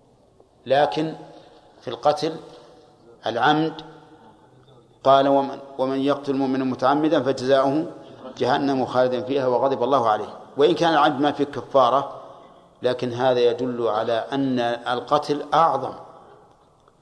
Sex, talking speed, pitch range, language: male, 100 wpm, 125-150 Hz, Arabic